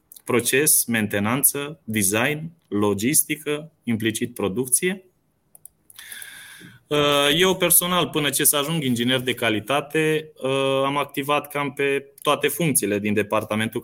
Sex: male